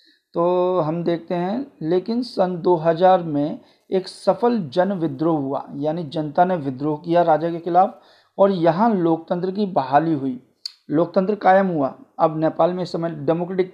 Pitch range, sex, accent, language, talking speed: 150-195 Hz, male, native, Hindi, 155 wpm